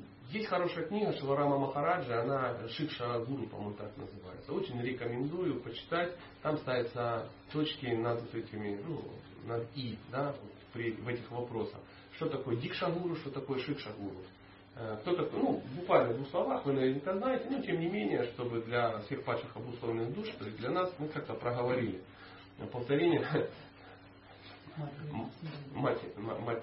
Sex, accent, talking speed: male, native, 135 wpm